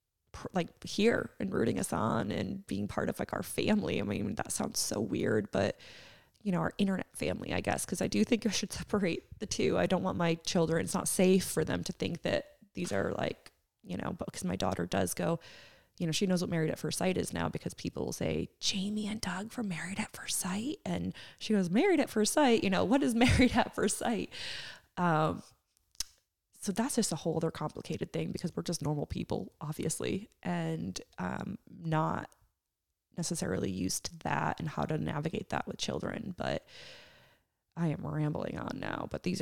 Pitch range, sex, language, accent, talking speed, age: 150-205 Hz, female, English, American, 205 wpm, 20-39